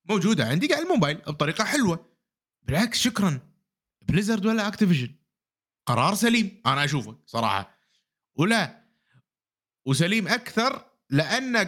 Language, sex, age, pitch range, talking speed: Arabic, male, 30-49, 130-200 Hz, 105 wpm